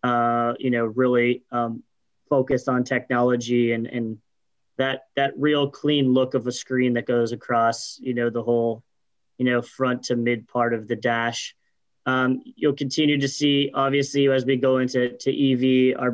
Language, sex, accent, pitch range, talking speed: English, male, American, 120-135 Hz, 175 wpm